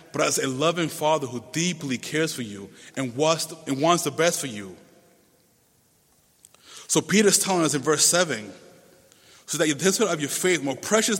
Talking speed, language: 190 wpm, English